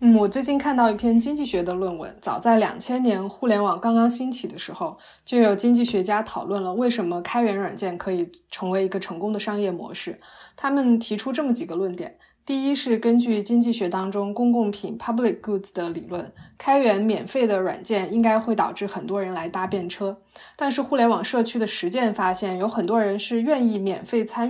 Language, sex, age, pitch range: Chinese, female, 20-39, 190-235 Hz